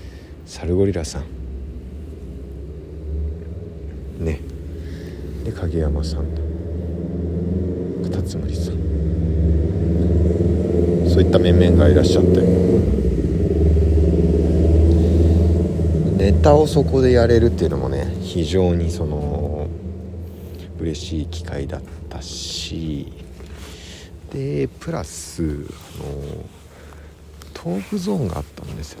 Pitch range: 80-90 Hz